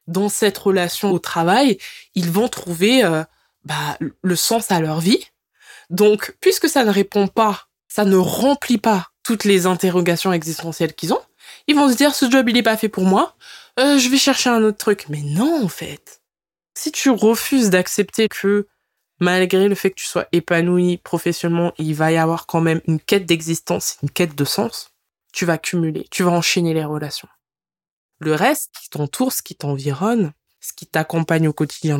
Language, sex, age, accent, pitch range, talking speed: French, female, 20-39, French, 160-220 Hz, 190 wpm